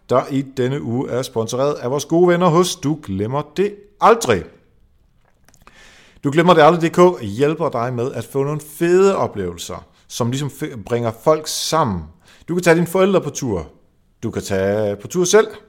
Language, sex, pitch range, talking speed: Danish, male, 105-150 Hz, 170 wpm